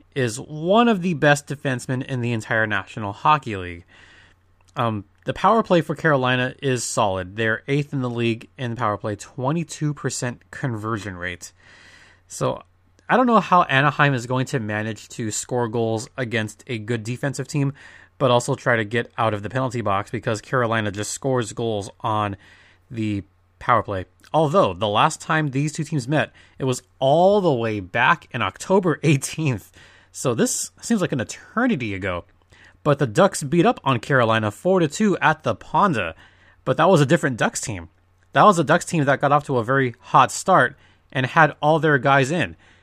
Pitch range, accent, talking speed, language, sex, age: 105-145 Hz, American, 180 wpm, English, male, 20-39